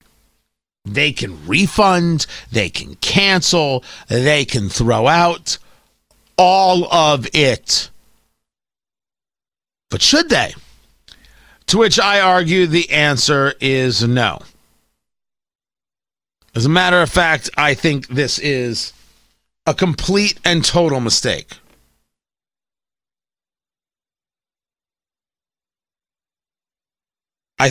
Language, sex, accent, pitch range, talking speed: English, male, American, 140-200 Hz, 85 wpm